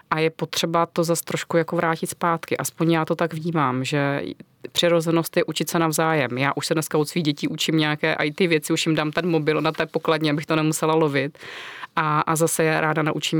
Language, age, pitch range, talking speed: Czech, 30-49, 145-160 Hz, 215 wpm